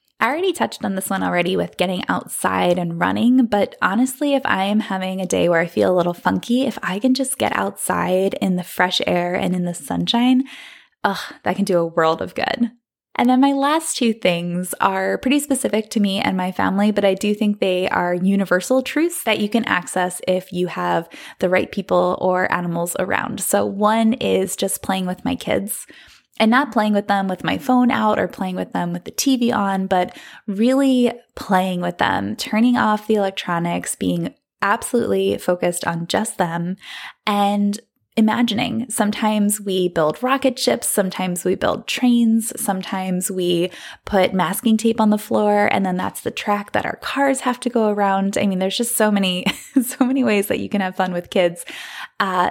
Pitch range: 185-240 Hz